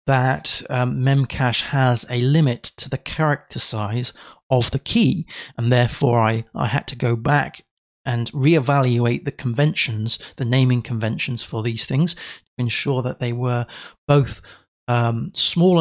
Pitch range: 120-150 Hz